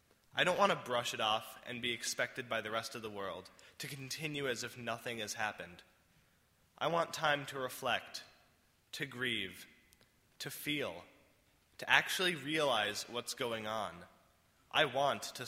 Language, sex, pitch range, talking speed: English, male, 115-145 Hz, 160 wpm